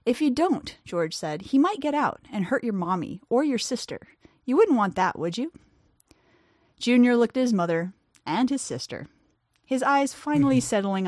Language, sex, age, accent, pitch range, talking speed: English, female, 30-49, American, 180-260 Hz, 185 wpm